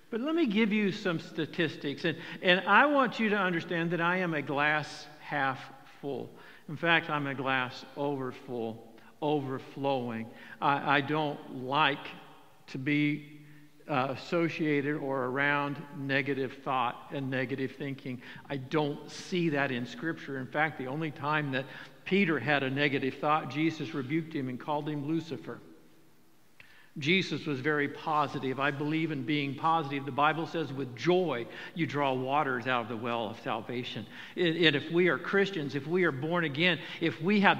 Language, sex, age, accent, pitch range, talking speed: English, male, 60-79, American, 145-195 Hz, 165 wpm